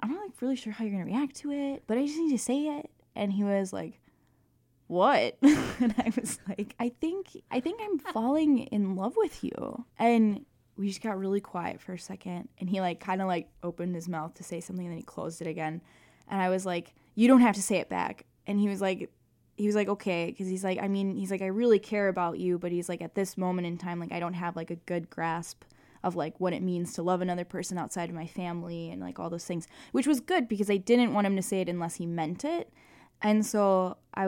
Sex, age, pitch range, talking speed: female, 10-29, 170-220 Hz, 260 wpm